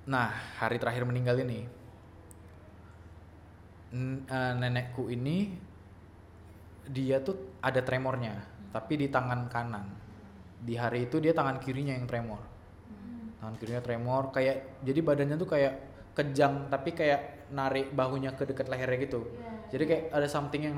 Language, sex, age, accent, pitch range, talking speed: Indonesian, male, 20-39, native, 100-135 Hz, 130 wpm